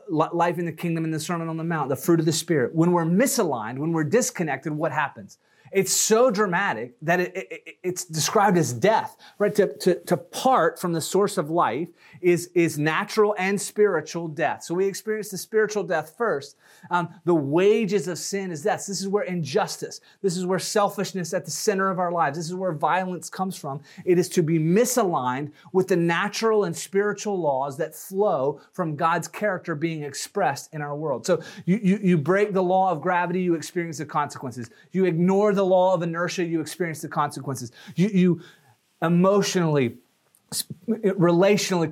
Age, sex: 30-49, male